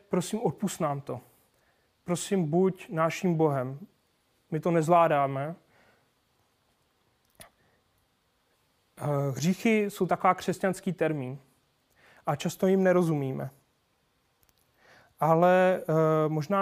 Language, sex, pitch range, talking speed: Czech, male, 150-185 Hz, 75 wpm